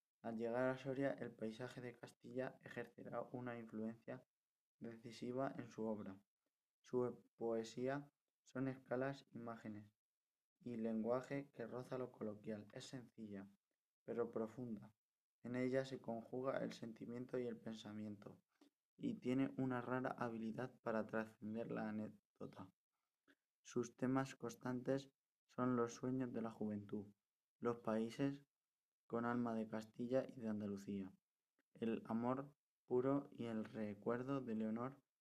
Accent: Spanish